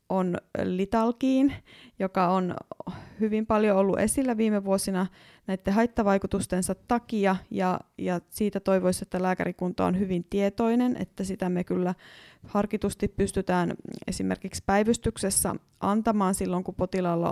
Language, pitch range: Finnish, 175-195 Hz